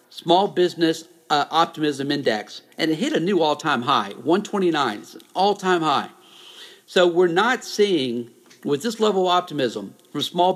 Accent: American